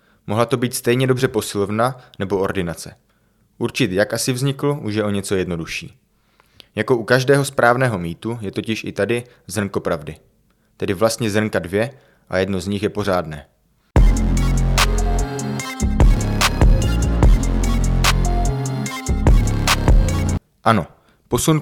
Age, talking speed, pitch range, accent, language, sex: 20-39, 110 wpm, 105-125 Hz, native, Czech, male